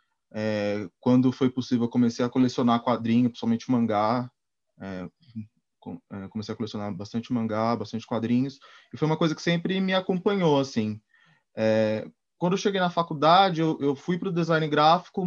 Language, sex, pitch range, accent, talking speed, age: Portuguese, male, 115-150 Hz, Brazilian, 160 wpm, 20-39